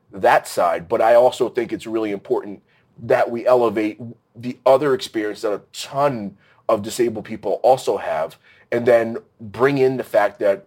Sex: male